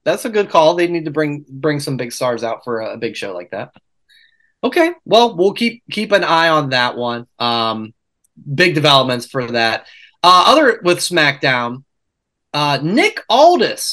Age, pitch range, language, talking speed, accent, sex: 30-49, 145-205 Hz, English, 175 wpm, American, male